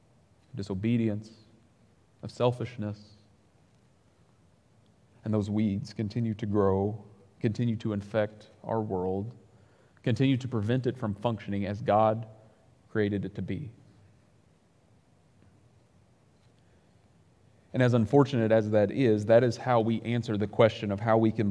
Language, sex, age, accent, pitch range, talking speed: English, male, 30-49, American, 105-125 Hz, 120 wpm